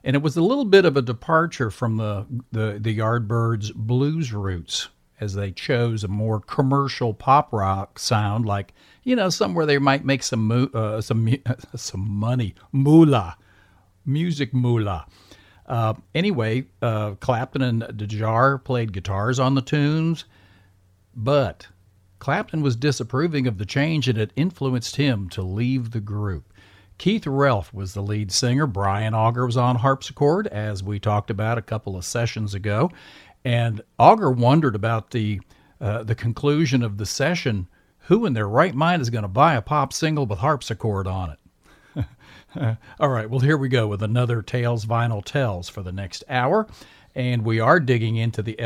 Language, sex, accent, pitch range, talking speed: English, male, American, 105-135 Hz, 165 wpm